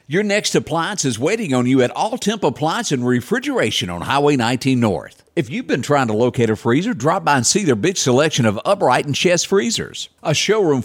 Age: 50-69